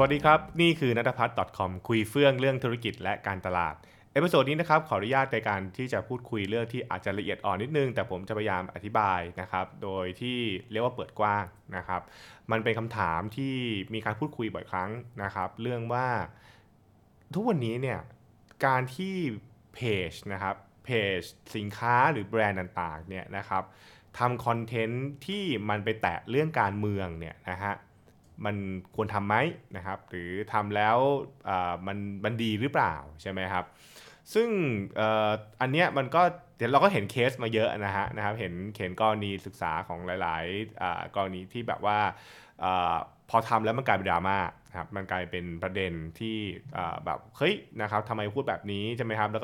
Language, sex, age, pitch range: Thai, male, 20-39, 95-120 Hz